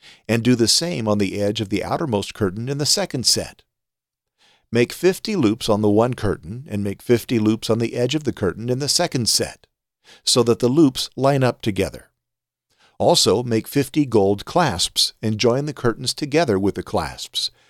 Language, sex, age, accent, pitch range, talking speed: English, male, 50-69, American, 100-125 Hz, 190 wpm